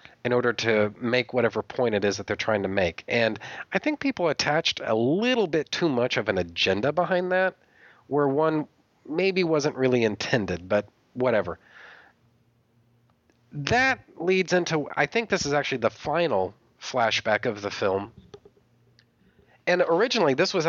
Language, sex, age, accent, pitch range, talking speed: English, male, 40-59, American, 110-140 Hz, 155 wpm